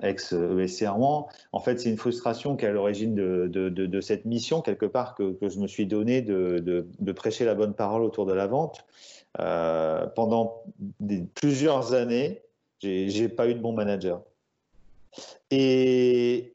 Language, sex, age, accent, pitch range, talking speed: French, male, 40-59, French, 110-145 Hz, 180 wpm